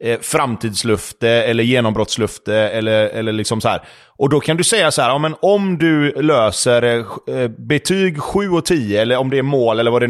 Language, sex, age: Swedish, male, 30-49